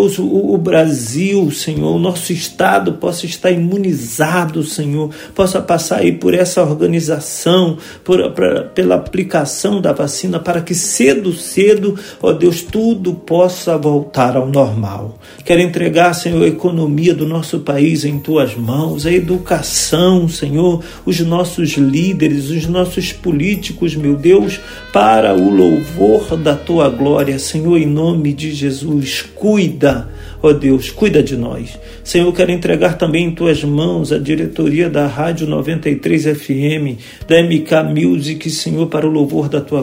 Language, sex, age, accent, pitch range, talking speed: Portuguese, male, 40-59, Brazilian, 145-175 Hz, 140 wpm